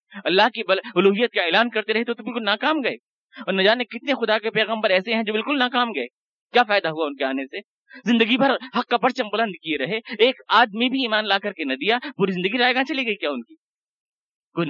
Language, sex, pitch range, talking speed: Urdu, male, 170-260 Hz, 245 wpm